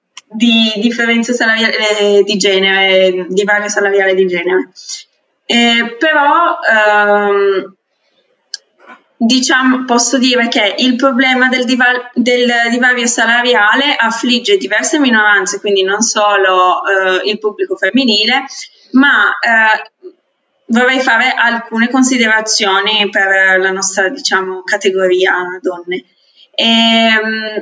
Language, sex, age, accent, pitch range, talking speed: Italian, female, 20-39, native, 200-250 Hz, 105 wpm